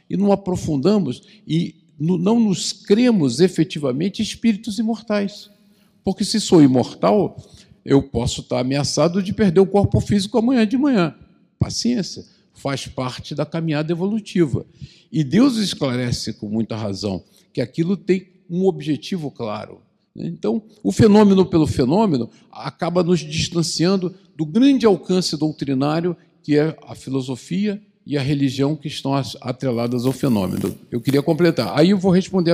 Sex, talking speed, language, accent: male, 140 wpm, Portuguese, Brazilian